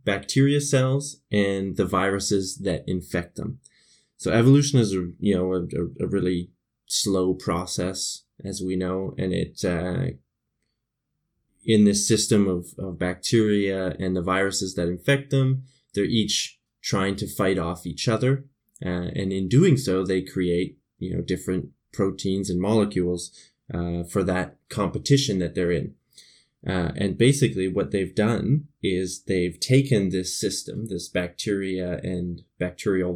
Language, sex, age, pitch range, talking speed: English, male, 20-39, 90-110 Hz, 145 wpm